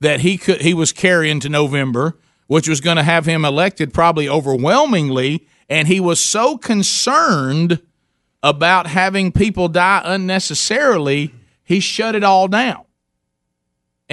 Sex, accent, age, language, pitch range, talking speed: male, American, 50-69, English, 130-180 Hz, 130 wpm